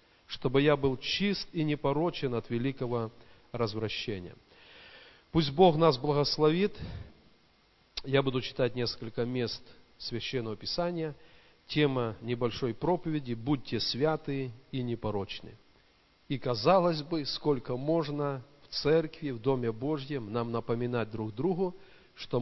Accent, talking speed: native, 110 wpm